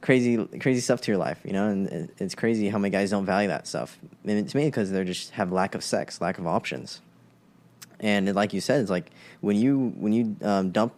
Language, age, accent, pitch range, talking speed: English, 10-29, American, 100-125 Hz, 235 wpm